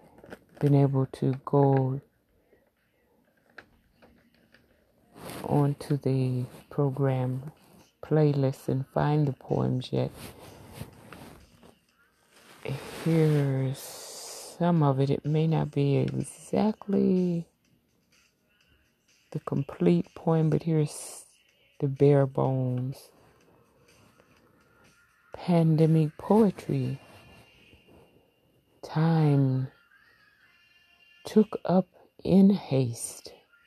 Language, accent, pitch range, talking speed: English, American, 130-165 Hz, 65 wpm